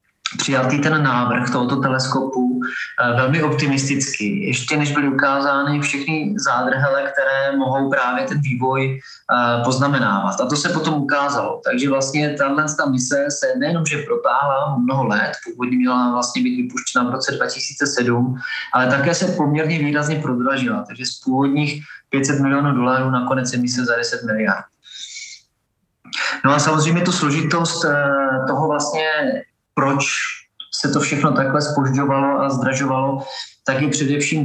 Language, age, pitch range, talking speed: Czech, 20-39, 130-150 Hz, 135 wpm